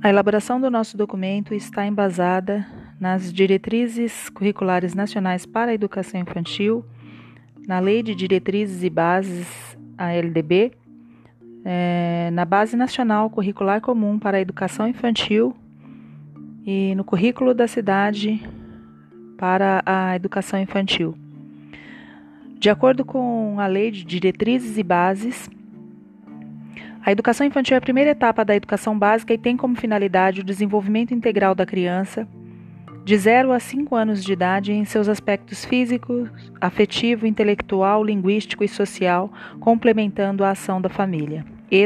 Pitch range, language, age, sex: 185-220 Hz, Portuguese, 30-49, female